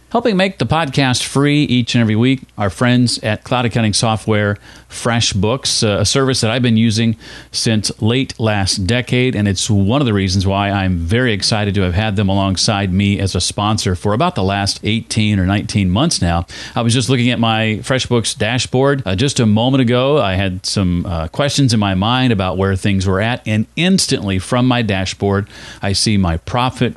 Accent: American